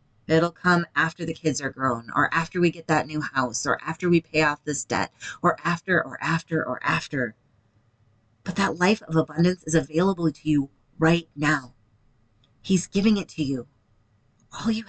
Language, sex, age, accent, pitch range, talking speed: English, female, 30-49, American, 135-195 Hz, 180 wpm